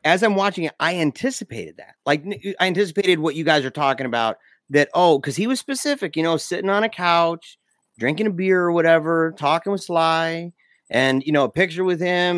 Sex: male